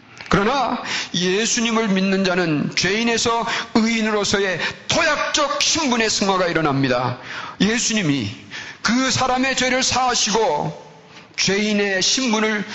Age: 40-59